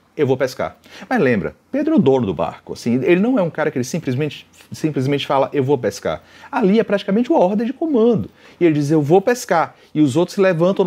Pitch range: 115-190 Hz